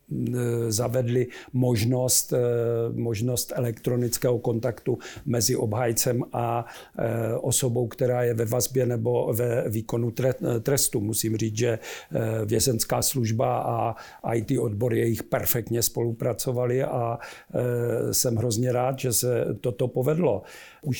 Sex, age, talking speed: male, 50-69, 105 wpm